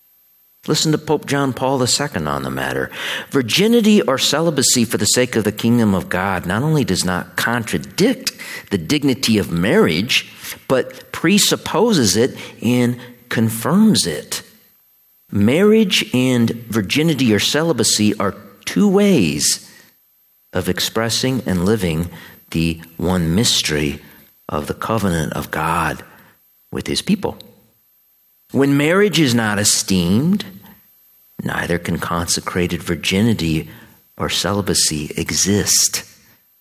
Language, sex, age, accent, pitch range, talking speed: English, male, 50-69, American, 90-135 Hz, 115 wpm